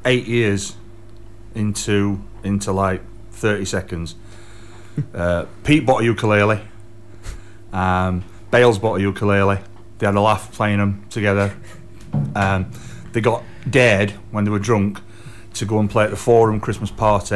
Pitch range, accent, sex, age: 100-115 Hz, British, male, 30-49